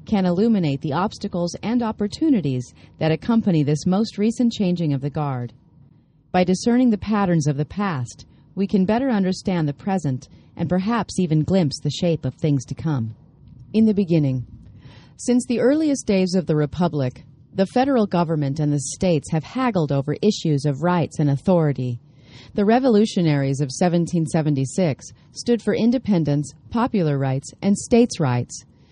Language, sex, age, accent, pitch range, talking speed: English, female, 40-59, American, 140-200 Hz, 155 wpm